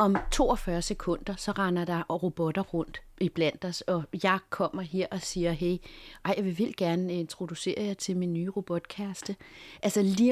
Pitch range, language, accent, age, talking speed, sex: 175-230 Hz, Danish, native, 30-49, 175 wpm, female